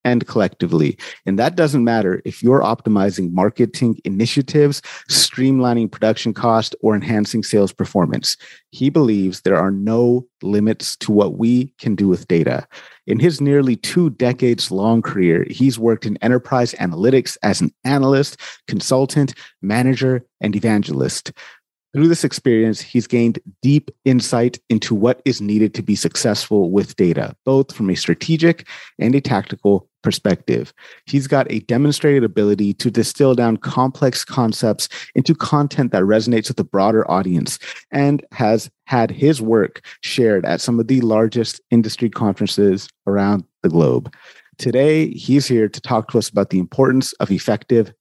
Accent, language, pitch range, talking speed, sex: American, English, 110-135 Hz, 150 wpm, male